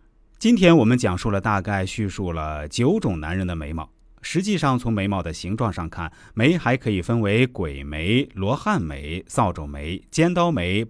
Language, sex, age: Chinese, male, 30-49